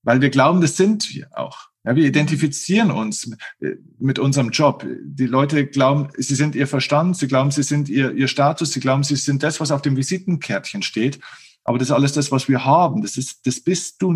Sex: male